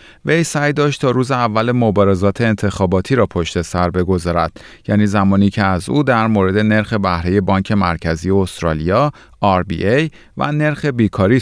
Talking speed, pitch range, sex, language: 150 wpm, 90-130 Hz, male, Persian